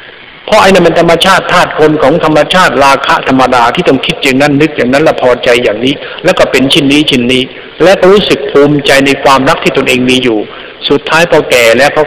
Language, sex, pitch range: Thai, male, 135-195 Hz